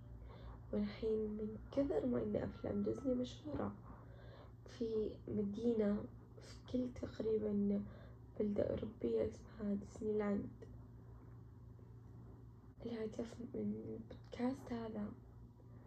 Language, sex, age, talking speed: Arabic, female, 10-29, 85 wpm